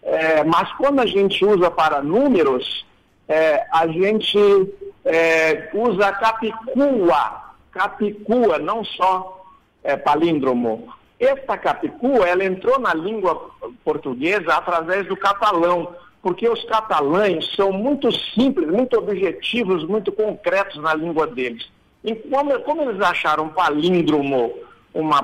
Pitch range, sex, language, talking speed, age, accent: 175-275 Hz, male, Portuguese, 115 wpm, 60-79, Brazilian